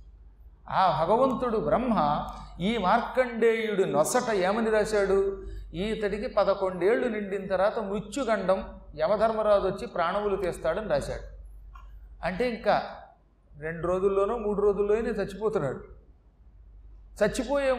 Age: 40-59